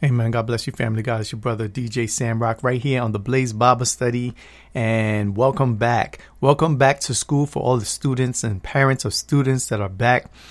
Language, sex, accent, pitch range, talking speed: English, male, American, 110-130 Hz, 205 wpm